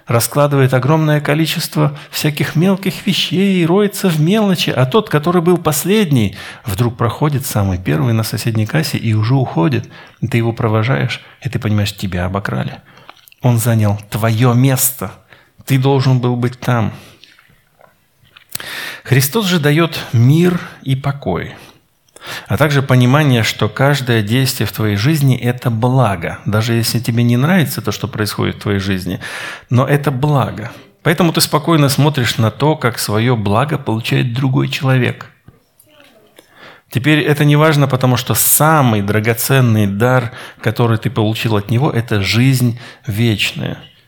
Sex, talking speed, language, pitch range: male, 140 wpm, Russian, 115-150 Hz